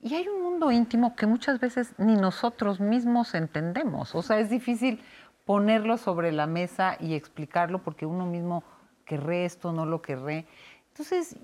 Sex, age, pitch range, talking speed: female, 40-59, 165-225 Hz, 165 wpm